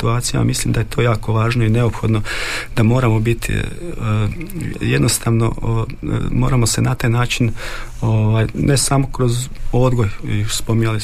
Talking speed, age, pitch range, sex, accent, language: 135 wpm, 40-59, 110-120 Hz, male, native, Croatian